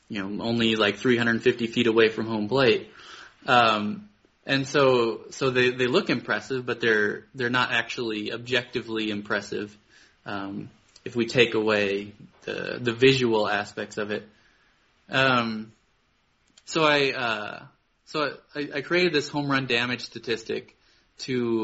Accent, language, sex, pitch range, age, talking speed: American, English, male, 110-130 Hz, 20-39, 145 wpm